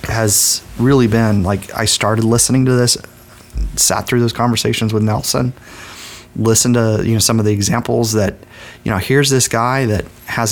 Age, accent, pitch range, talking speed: 30-49, American, 105-120 Hz, 175 wpm